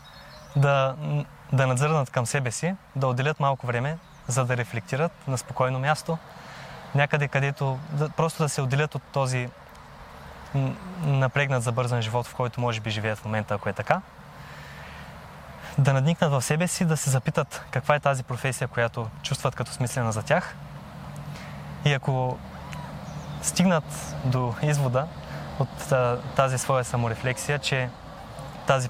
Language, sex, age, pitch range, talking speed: Bulgarian, male, 20-39, 125-150 Hz, 145 wpm